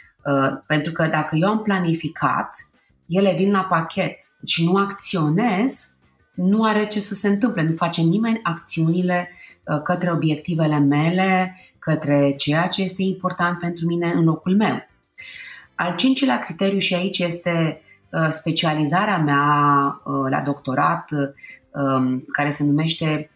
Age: 30-49